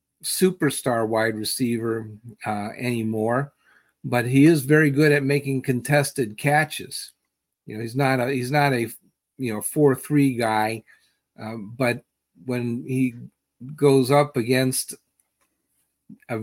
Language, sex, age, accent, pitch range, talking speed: English, male, 50-69, American, 115-140 Hz, 130 wpm